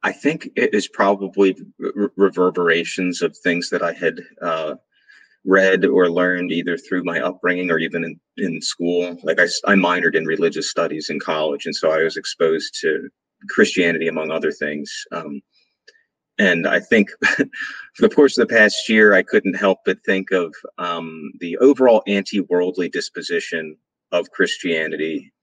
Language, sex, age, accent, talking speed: English, male, 30-49, American, 160 wpm